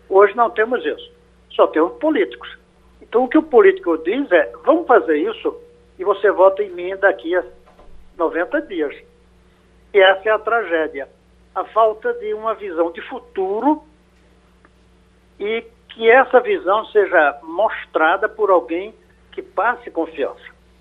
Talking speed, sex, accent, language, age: 140 wpm, male, Brazilian, Portuguese, 60-79